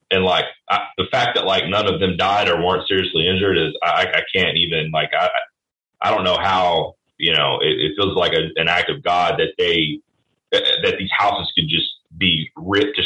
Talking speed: 205 wpm